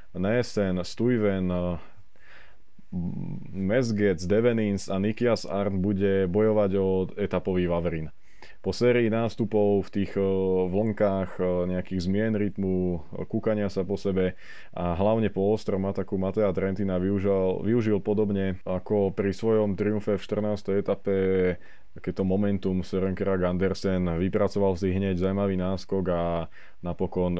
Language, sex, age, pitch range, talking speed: Slovak, male, 20-39, 90-105 Hz, 120 wpm